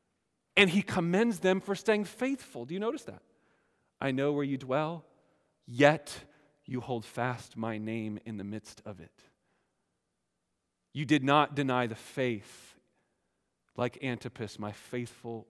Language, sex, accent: English, male, American